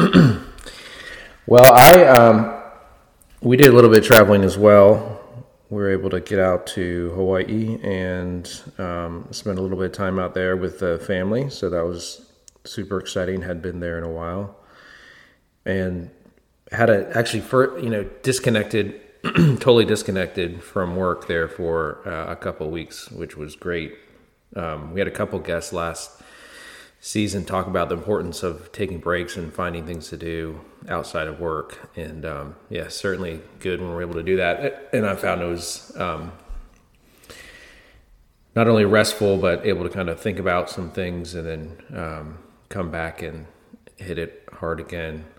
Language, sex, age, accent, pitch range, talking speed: English, male, 30-49, American, 85-105 Hz, 170 wpm